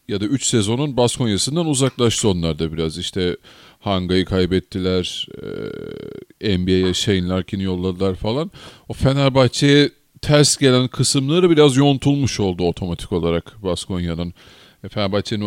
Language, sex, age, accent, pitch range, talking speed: Turkish, male, 40-59, native, 90-120 Hz, 115 wpm